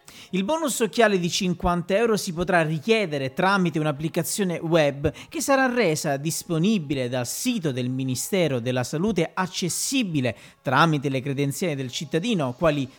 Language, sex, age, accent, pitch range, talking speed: Italian, male, 40-59, native, 150-215 Hz, 135 wpm